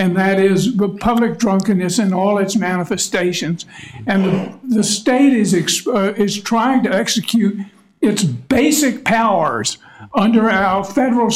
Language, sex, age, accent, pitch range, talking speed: English, male, 60-79, American, 195-240 Hz, 145 wpm